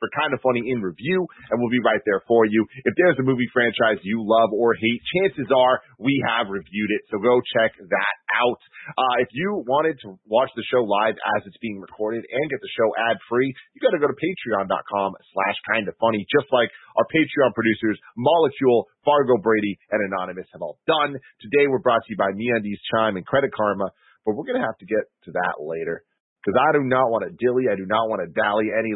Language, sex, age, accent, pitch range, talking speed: English, male, 30-49, American, 105-135 Hz, 220 wpm